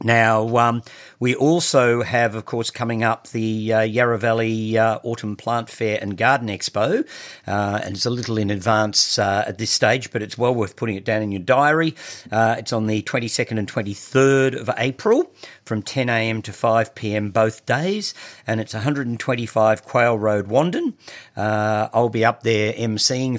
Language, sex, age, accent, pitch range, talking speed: English, male, 50-69, Australian, 105-125 Hz, 175 wpm